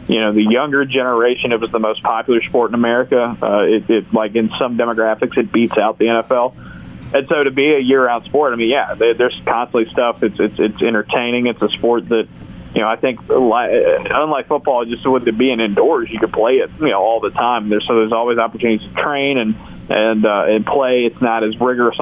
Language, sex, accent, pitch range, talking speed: English, male, American, 110-130 Hz, 220 wpm